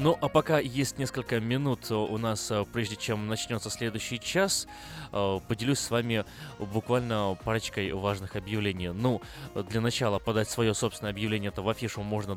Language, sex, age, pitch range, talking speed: Russian, male, 20-39, 100-125 Hz, 145 wpm